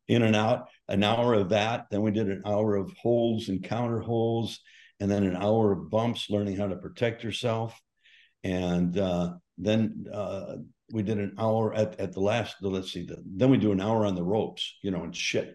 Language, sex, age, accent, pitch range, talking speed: English, male, 60-79, American, 95-110 Hz, 210 wpm